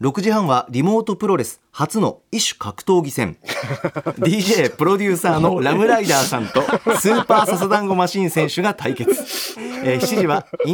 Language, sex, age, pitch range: Japanese, male, 40-59, 140-200 Hz